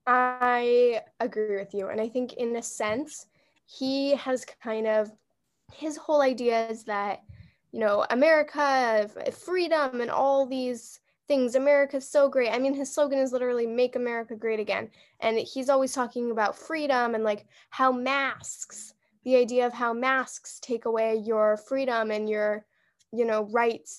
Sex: female